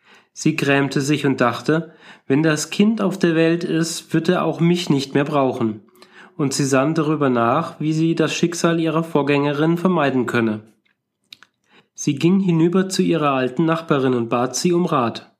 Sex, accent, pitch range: male, German, 130-170 Hz